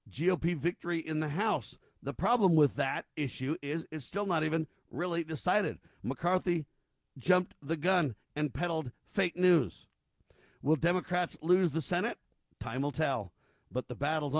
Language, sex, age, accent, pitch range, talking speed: English, male, 50-69, American, 135-160 Hz, 150 wpm